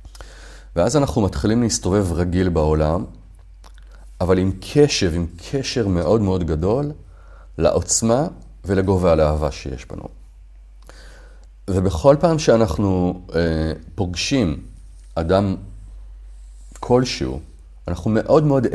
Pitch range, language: 80-110 Hz, Hebrew